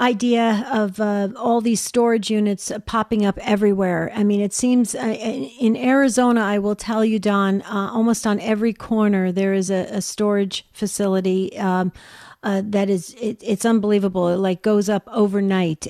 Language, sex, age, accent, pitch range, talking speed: English, female, 50-69, American, 195-230 Hz, 170 wpm